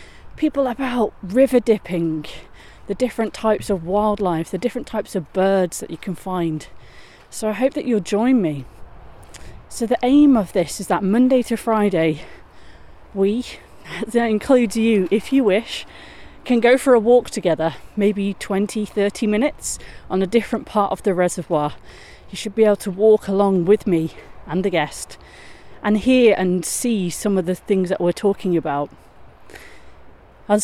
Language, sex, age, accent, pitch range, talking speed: English, female, 30-49, British, 175-225 Hz, 165 wpm